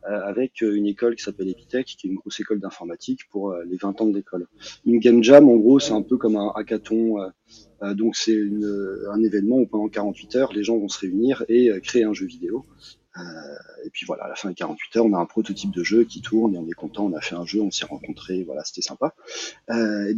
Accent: French